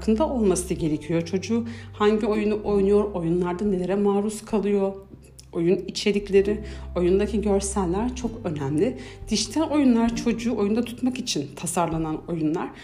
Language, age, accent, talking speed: Turkish, 60-79, native, 115 wpm